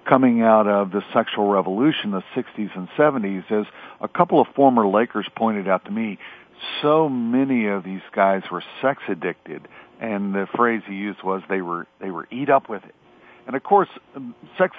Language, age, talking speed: English, 50-69, 185 wpm